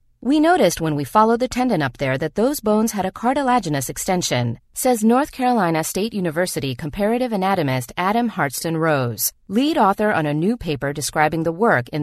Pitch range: 145-240 Hz